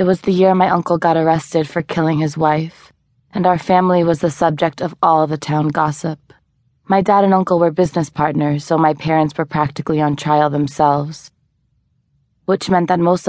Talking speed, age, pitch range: 190 wpm, 20-39, 145-165 Hz